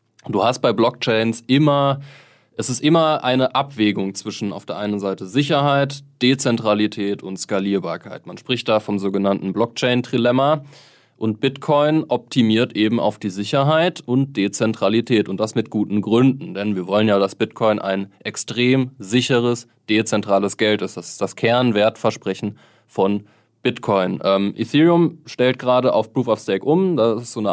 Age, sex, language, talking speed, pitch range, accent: 20-39, male, German, 155 wpm, 105-130 Hz, German